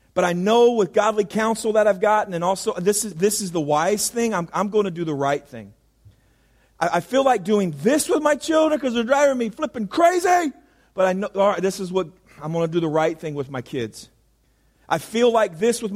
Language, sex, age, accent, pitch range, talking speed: English, male, 40-59, American, 175-225 Hz, 235 wpm